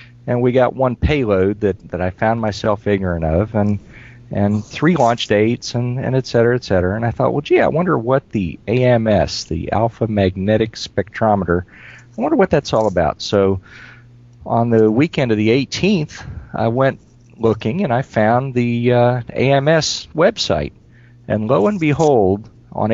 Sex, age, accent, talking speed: male, 40-59, American, 170 wpm